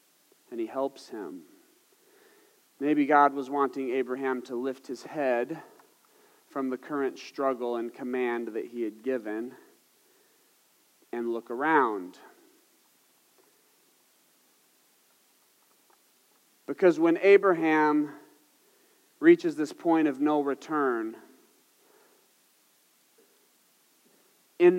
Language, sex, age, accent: English, male, 30-49, American